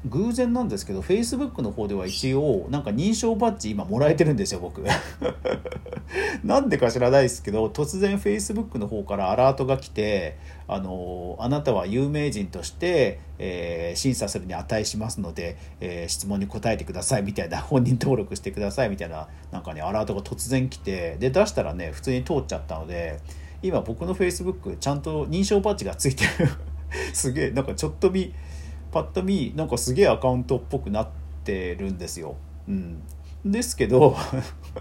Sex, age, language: male, 50-69, Japanese